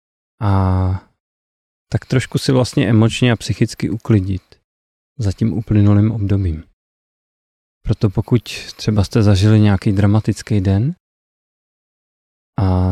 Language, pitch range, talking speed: Czech, 100-120 Hz, 100 wpm